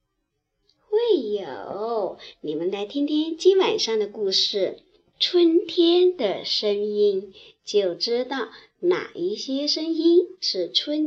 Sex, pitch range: male, 245-380 Hz